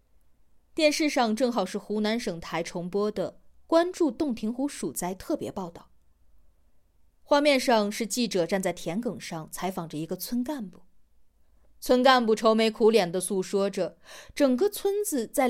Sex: female